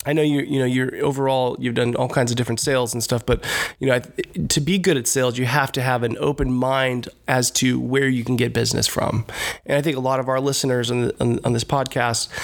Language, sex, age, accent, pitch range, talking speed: English, male, 20-39, American, 125-150 Hz, 260 wpm